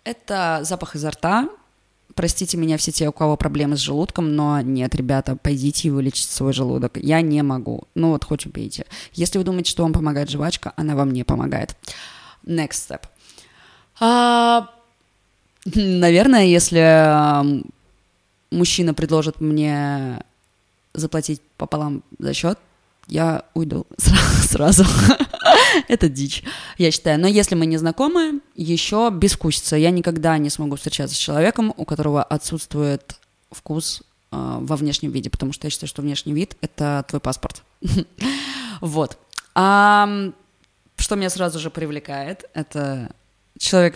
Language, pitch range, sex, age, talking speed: Russian, 145-180 Hz, female, 20-39, 130 wpm